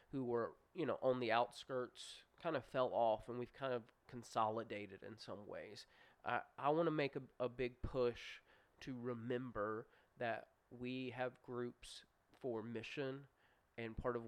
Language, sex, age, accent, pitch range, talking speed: English, male, 20-39, American, 115-130 Hz, 165 wpm